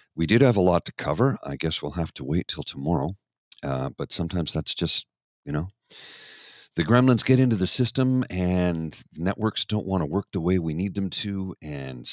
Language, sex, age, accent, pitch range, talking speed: English, male, 50-69, American, 70-100 Hz, 205 wpm